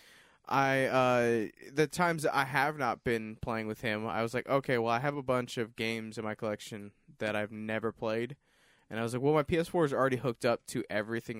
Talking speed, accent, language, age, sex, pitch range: 225 wpm, American, English, 20-39, male, 110-125 Hz